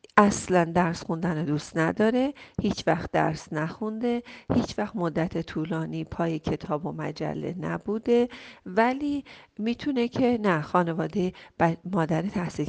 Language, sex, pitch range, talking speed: Persian, female, 175-245 Hz, 125 wpm